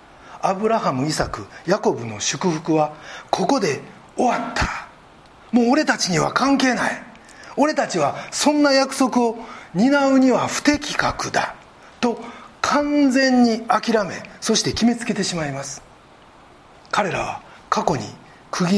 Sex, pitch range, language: male, 160-250 Hz, Japanese